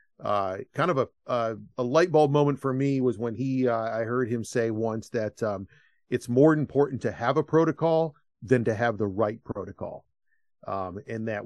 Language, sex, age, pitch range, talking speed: English, male, 40-59, 105-130 Hz, 200 wpm